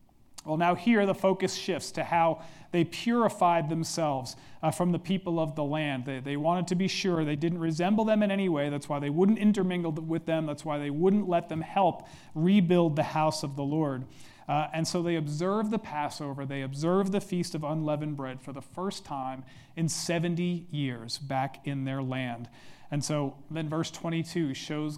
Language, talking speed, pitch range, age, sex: English, 195 wpm, 145-185 Hz, 40-59, male